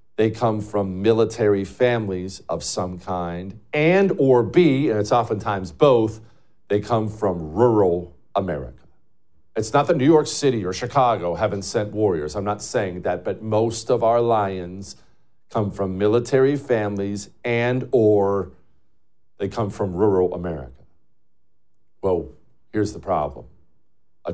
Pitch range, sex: 90-115 Hz, male